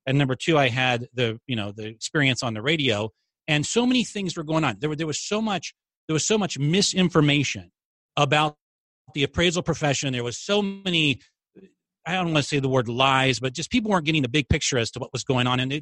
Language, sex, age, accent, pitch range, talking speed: English, male, 40-59, American, 125-155 Hz, 240 wpm